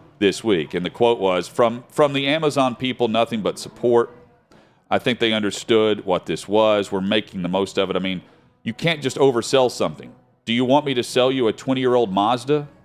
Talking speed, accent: 205 wpm, American